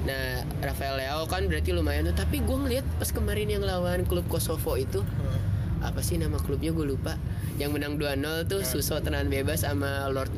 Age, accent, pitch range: 10-29, native, 90-140 Hz